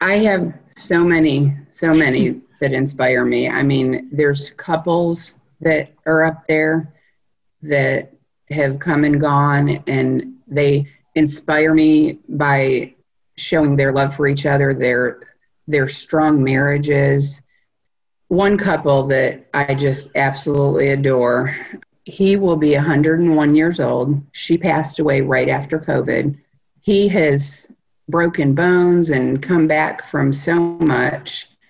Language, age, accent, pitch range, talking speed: English, 40-59, American, 140-160 Hz, 125 wpm